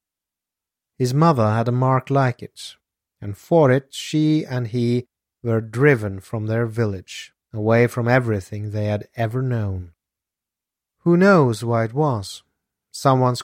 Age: 30-49